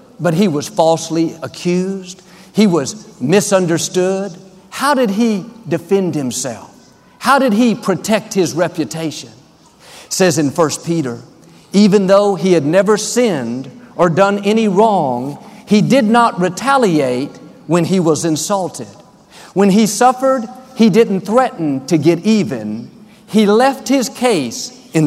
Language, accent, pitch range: English, American, 155-215 Hz